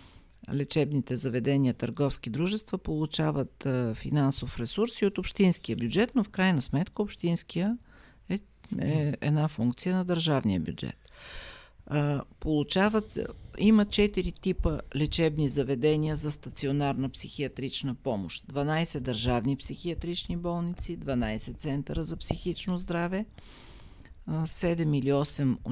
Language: Bulgarian